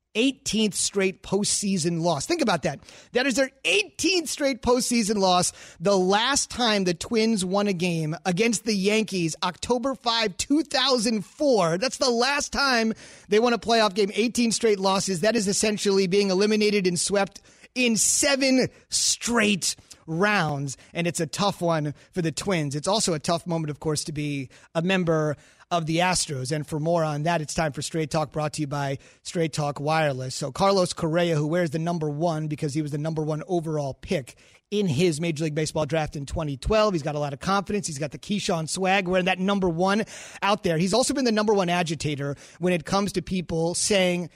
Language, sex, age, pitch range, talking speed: English, male, 30-49, 160-210 Hz, 195 wpm